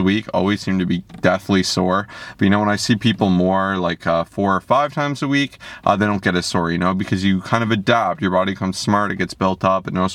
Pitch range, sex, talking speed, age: 95-110 Hz, male, 270 wpm, 30-49